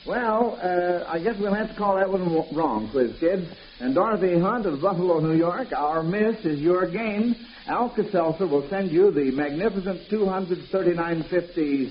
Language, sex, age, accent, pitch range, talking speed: English, male, 60-79, American, 155-200 Hz, 160 wpm